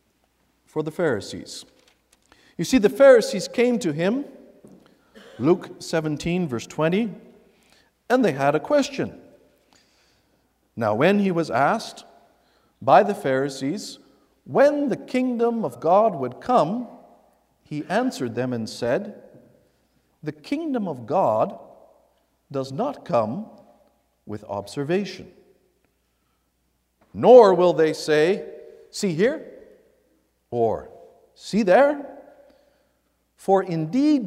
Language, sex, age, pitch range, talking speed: English, male, 50-69, 155-245 Hz, 100 wpm